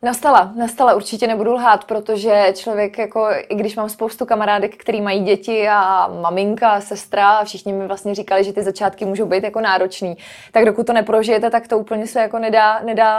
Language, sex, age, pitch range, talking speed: Czech, female, 20-39, 195-230 Hz, 195 wpm